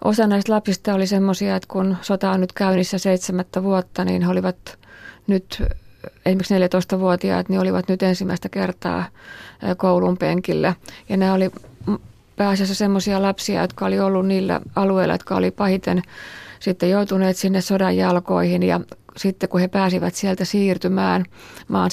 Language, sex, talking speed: Finnish, female, 145 wpm